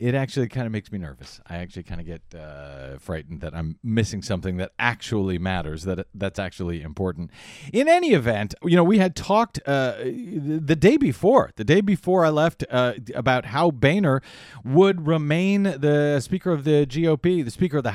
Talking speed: 190 wpm